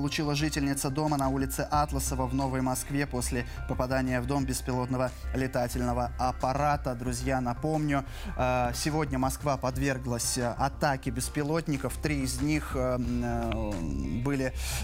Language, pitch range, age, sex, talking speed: Russian, 135-165 Hz, 20-39, male, 110 wpm